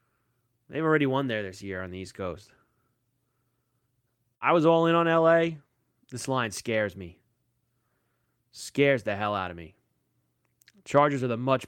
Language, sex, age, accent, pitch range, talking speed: English, male, 20-39, American, 115-150 Hz, 155 wpm